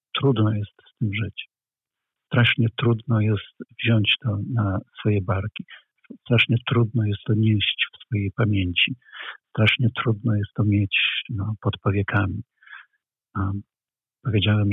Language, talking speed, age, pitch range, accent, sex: Polish, 120 wpm, 50-69, 100-120 Hz, native, male